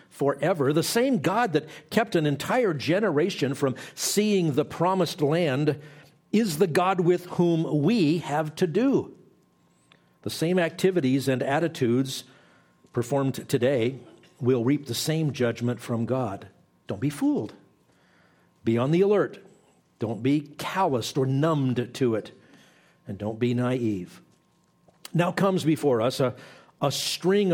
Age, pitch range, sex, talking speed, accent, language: 50-69, 125-165 Hz, male, 135 wpm, American, English